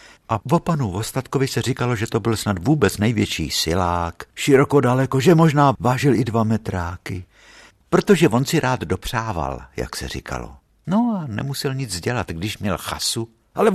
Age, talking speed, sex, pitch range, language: 60-79, 165 wpm, male, 85-130 Hz, Czech